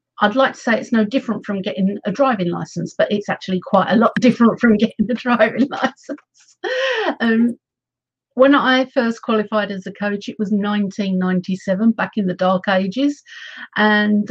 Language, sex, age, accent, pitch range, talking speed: English, female, 50-69, British, 195-235 Hz, 170 wpm